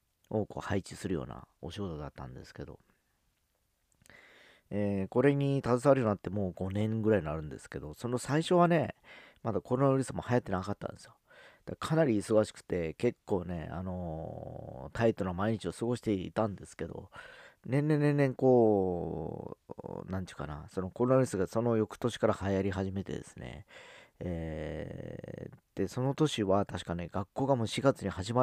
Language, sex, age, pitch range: Japanese, male, 40-59, 90-120 Hz